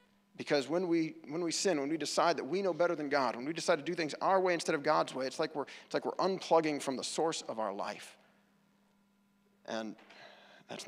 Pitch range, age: 135-190 Hz, 40-59